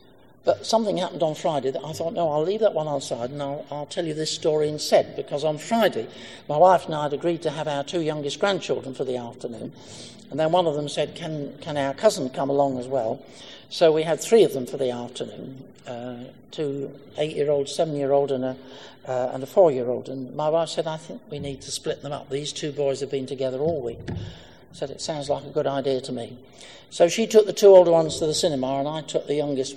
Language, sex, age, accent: English, male, 60-79, British